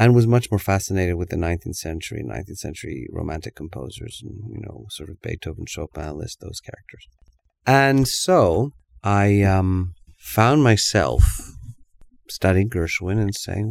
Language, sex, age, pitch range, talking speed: English, male, 40-59, 90-120 Hz, 145 wpm